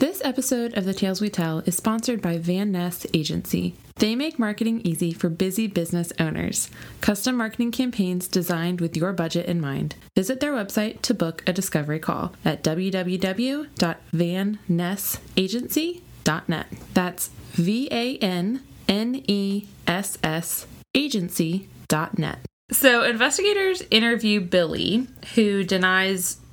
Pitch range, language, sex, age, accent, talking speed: 175-235 Hz, English, female, 20-39, American, 110 wpm